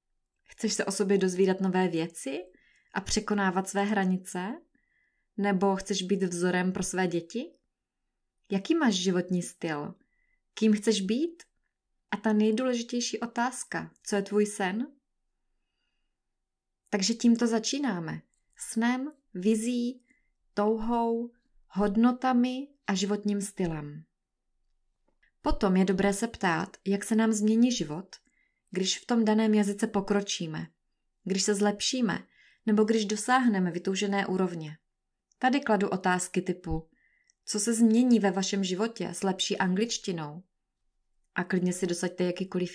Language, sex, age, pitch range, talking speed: Czech, female, 20-39, 185-230 Hz, 120 wpm